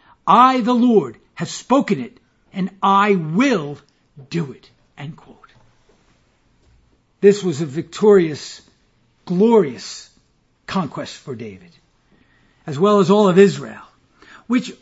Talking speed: 115 wpm